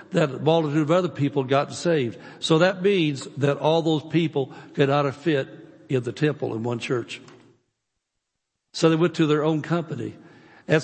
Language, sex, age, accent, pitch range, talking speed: English, male, 60-79, American, 140-170 Hz, 175 wpm